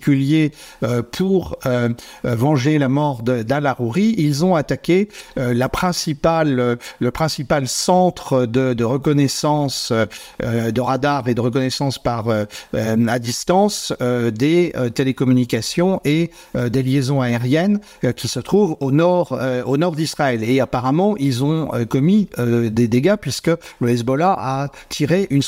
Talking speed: 145 wpm